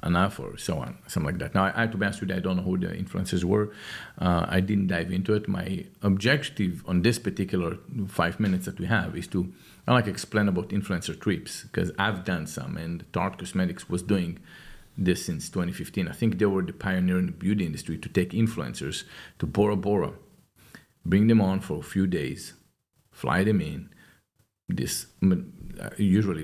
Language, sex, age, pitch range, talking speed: English, male, 40-59, 90-110 Hz, 195 wpm